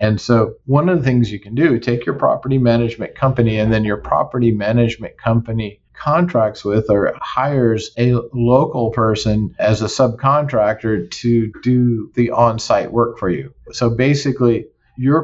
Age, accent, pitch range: 40-59, American, 105-120 Hz